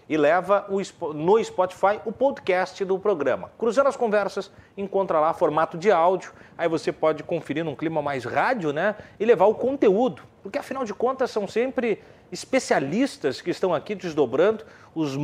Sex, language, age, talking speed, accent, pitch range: male, Portuguese, 40-59, 160 wpm, Brazilian, 135-195 Hz